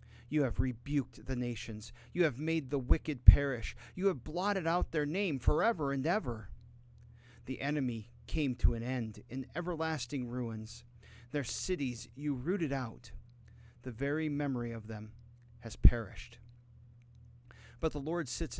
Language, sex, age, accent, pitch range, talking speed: English, male, 40-59, American, 115-140 Hz, 145 wpm